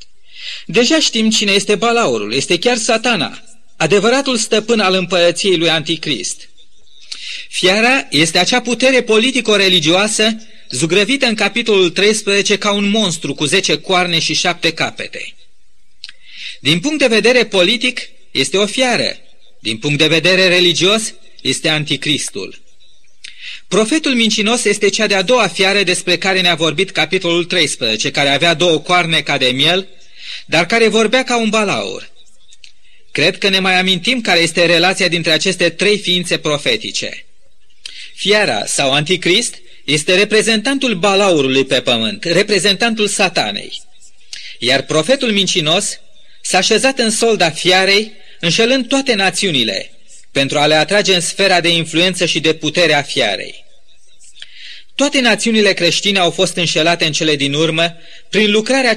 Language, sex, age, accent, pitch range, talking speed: Romanian, male, 30-49, native, 170-220 Hz, 135 wpm